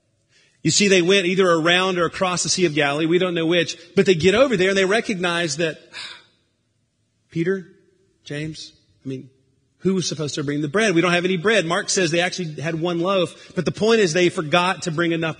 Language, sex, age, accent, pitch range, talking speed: English, male, 40-59, American, 150-185 Hz, 220 wpm